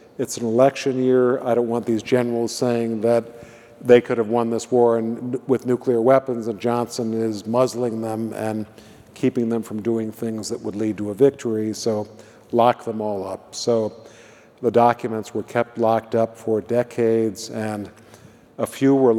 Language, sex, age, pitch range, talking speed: English, male, 50-69, 110-125 Hz, 180 wpm